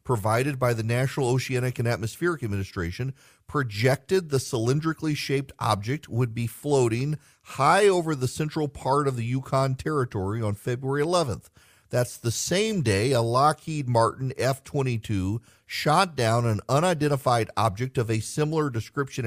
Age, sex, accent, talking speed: 40-59, male, American, 140 wpm